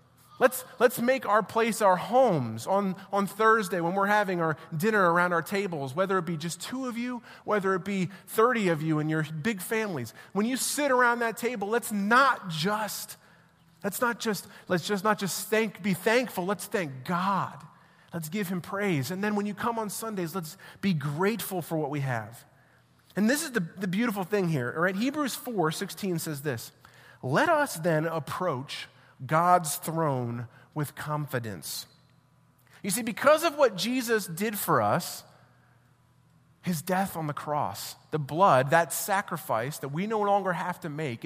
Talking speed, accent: 180 wpm, American